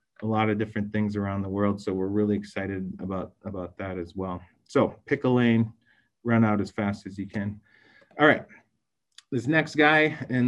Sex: male